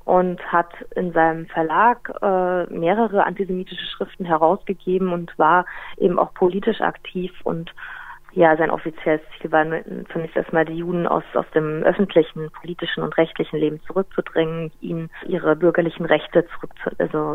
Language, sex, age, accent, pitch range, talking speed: German, female, 30-49, German, 165-195 Hz, 140 wpm